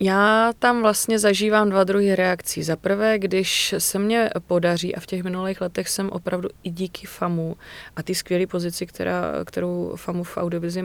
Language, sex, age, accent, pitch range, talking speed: Czech, female, 20-39, native, 170-195 Hz, 175 wpm